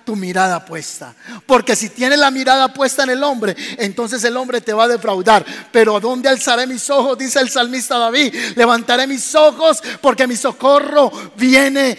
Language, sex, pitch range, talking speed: Spanish, male, 235-315 Hz, 175 wpm